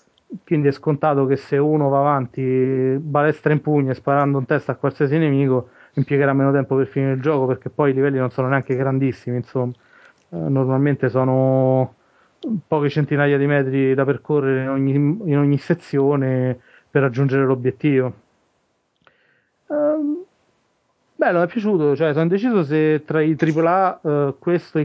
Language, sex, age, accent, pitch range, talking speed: Italian, male, 30-49, native, 130-150 Hz, 155 wpm